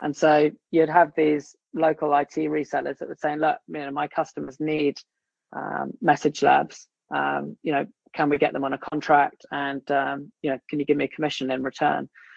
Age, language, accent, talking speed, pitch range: 20-39, English, British, 185 wpm, 140-160 Hz